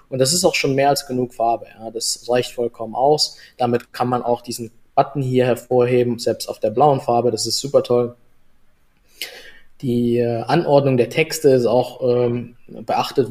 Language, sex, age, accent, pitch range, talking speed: German, male, 20-39, German, 115-130 Hz, 170 wpm